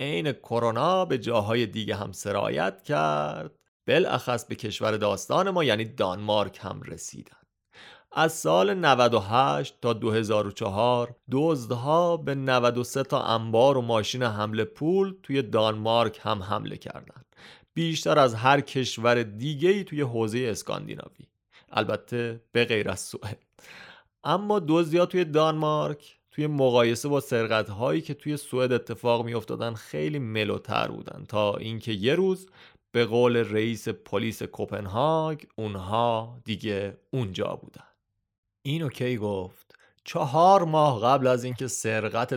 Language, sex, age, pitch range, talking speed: Persian, male, 30-49, 105-145 Hz, 125 wpm